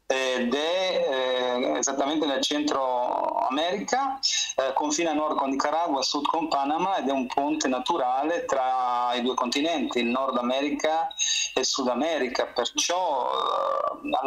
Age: 40-59